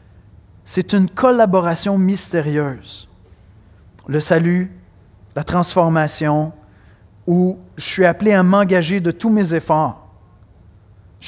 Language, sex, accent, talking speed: French, male, Canadian, 100 wpm